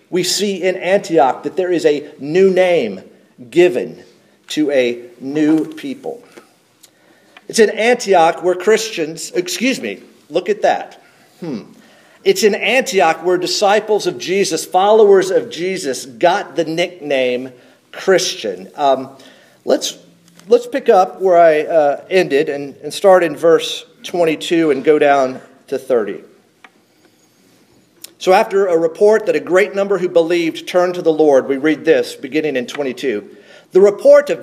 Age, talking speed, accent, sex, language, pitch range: 50-69, 145 wpm, American, male, English, 160-225 Hz